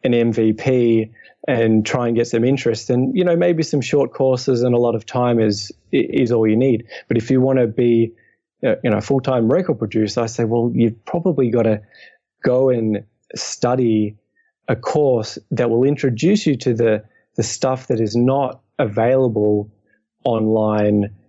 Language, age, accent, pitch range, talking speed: English, 20-39, Australian, 110-125 Hz, 170 wpm